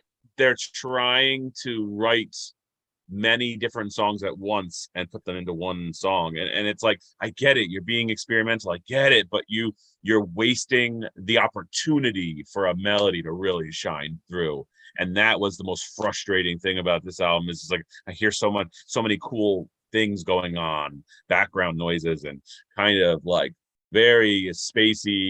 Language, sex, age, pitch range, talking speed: English, male, 30-49, 85-105 Hz, 170 wpm